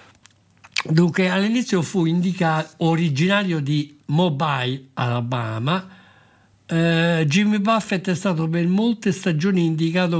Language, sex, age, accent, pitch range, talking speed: Italian, male, 60-79, native, 135-180 Hz, 100 wpm